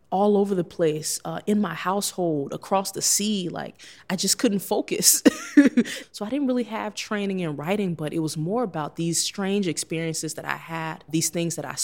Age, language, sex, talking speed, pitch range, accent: 20-39, English, female, 200 wpm, 155-195 Hz, American